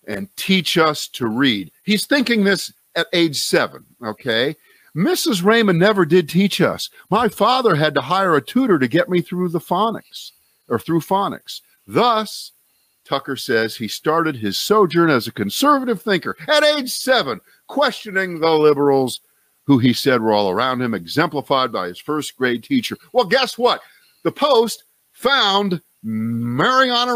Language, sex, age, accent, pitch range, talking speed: English, male, 50-69, American, 135-215 Hz, 155 wpm